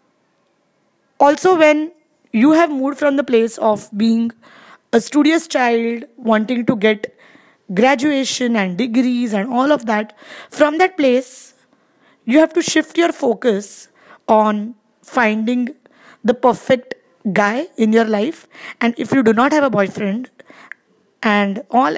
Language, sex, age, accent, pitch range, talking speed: English, female, 20-39, Indian, 220-275 Hz, 135 wpm